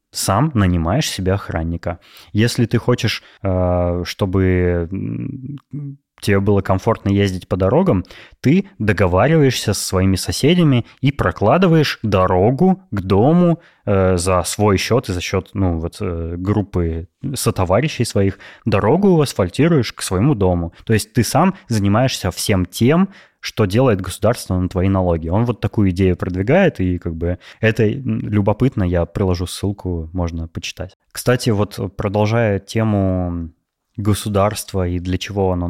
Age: 20-39